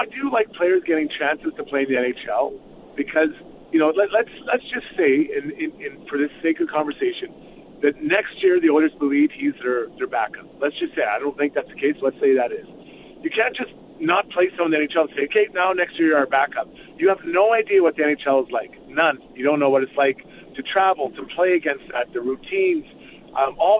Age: 40-59